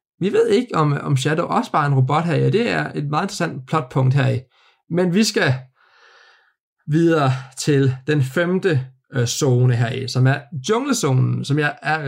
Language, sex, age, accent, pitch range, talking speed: Danish, male, 20-39, native, 130-150 Hz, 175 wpm